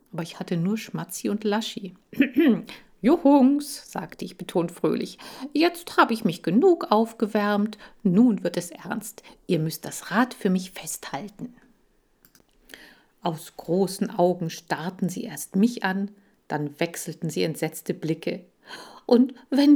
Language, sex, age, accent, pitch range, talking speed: German, female, 50-69, German, 170-245 Hz, 135 wpm